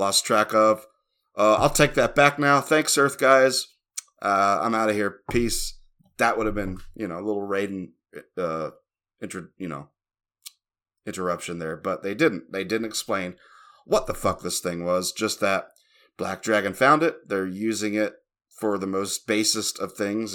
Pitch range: 95-110 Hz